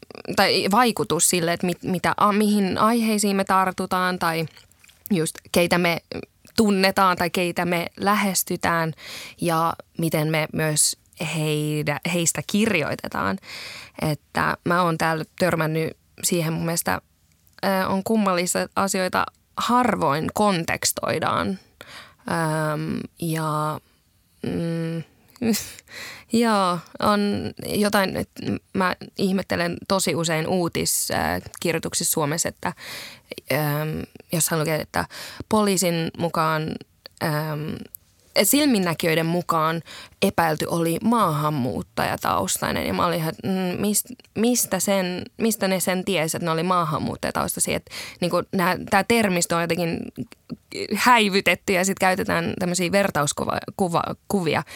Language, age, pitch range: Finnish, 20-39, 155-195 Hz